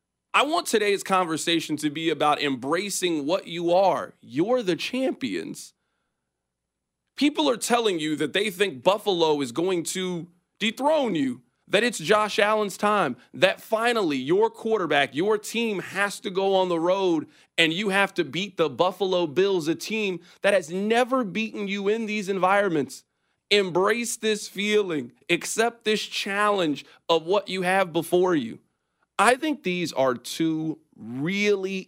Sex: male